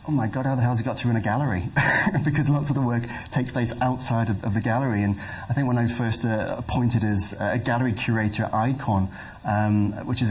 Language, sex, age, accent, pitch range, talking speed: English, male, 30-49, British, 100-120 Hz, 250 wpm